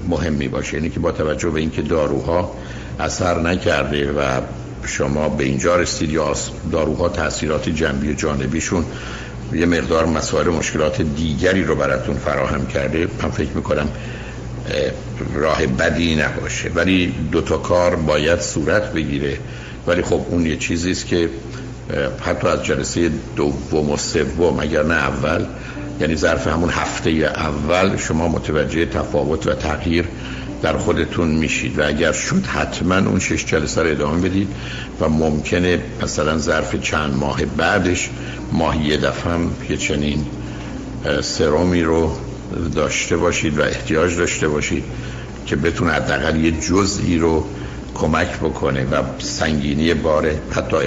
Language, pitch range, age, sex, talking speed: Persian, 70-85 Hz, 60-79, male, 130 wpm